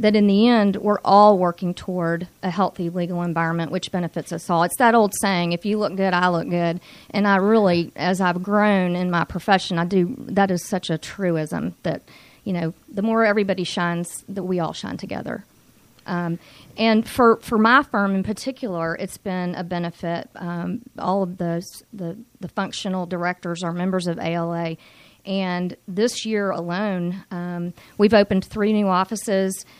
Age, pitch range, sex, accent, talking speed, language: 40-59, 175-205 Hz, female, American, 180 wpm, English